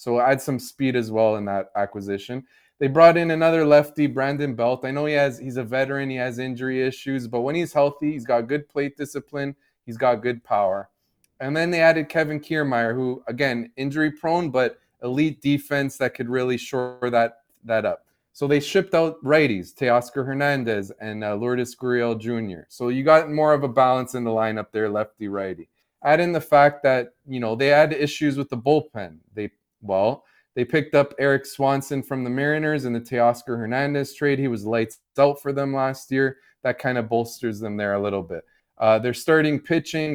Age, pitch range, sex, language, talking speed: 20-39, 115-145 Hz, male, English, 200 wpm